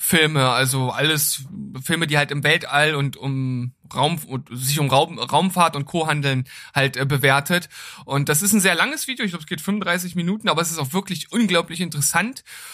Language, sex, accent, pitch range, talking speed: German, male, German, 140-180 Hz, 180 wpm